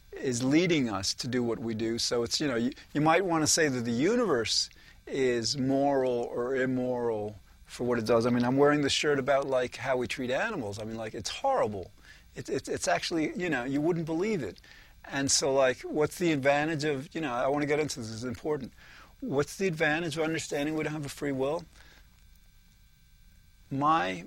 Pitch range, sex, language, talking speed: 115-145 Hz, male, English, 215 wpm